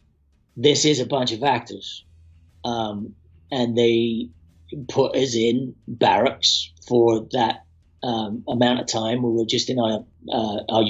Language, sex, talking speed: English, male, 145 wpm